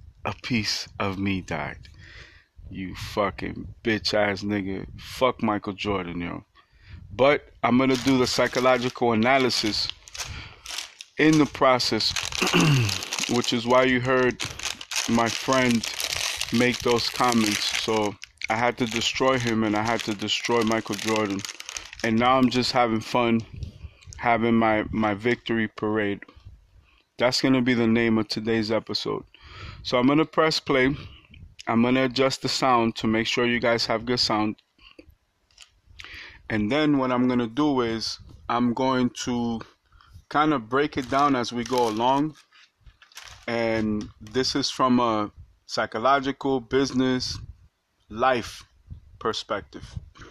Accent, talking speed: American, 135 wpm